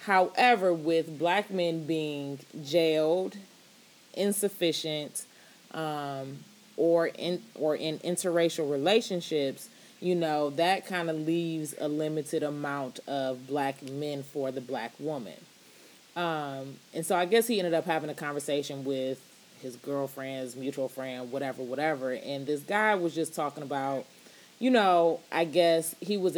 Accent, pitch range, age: American, 145-195 Hz, 20-39